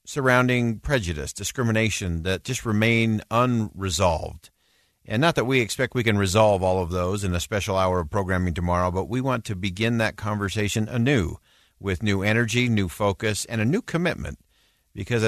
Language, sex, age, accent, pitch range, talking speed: English, male, 50-69, American, 95-125 Hz, 170 wpm